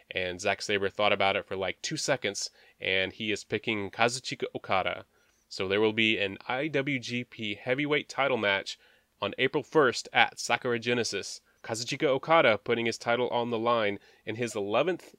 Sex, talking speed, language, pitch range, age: male, 165 wpm, English, 100-115 Hz, 20-39